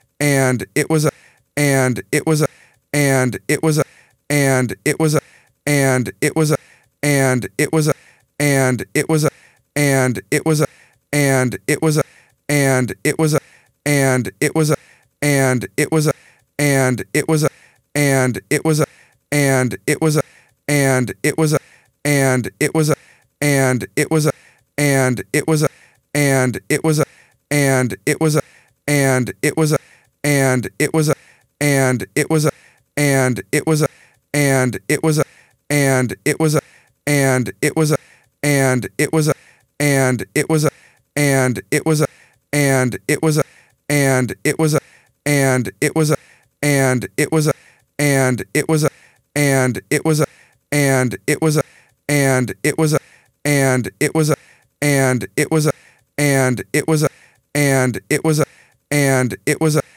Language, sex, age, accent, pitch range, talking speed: English, male, 40-59, American, 130-150 Hz, 205 wpm